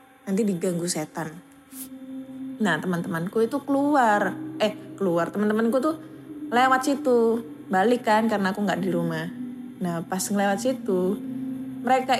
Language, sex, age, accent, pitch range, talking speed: Indonesian, female, 20-39, native, 170-230 Hz, 125 wpm